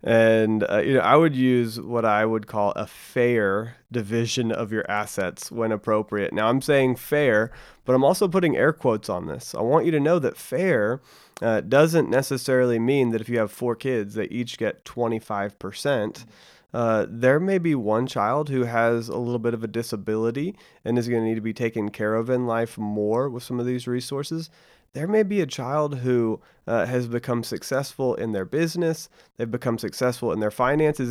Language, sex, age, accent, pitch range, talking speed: English, male, 30-49, American, 115-135 Hz, 200 wpm